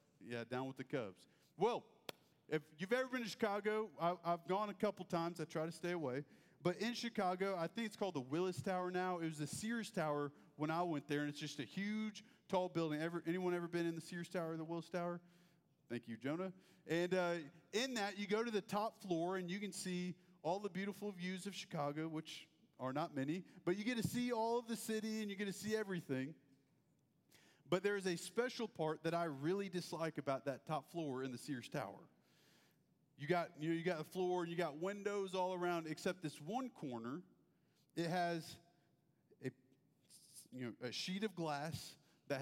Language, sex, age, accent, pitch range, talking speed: English, male, 40-59, American, 150-190 Hz, 210 wpm